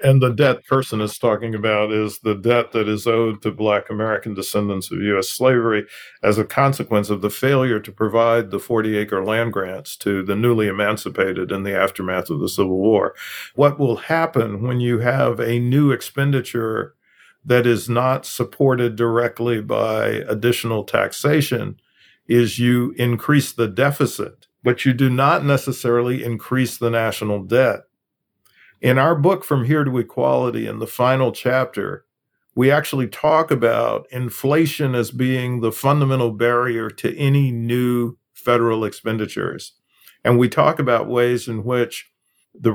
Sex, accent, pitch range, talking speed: male, American, 110-130 Hz, 150 wpm